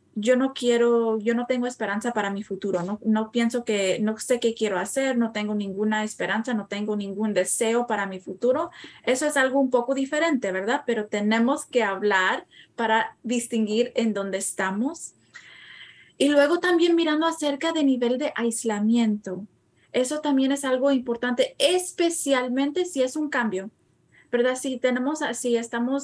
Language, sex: Spanish, female